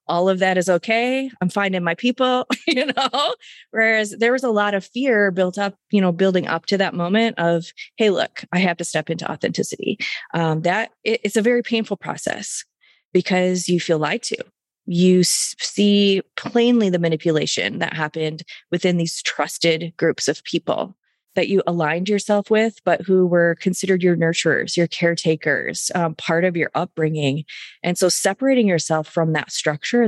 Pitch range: 165-205 Hz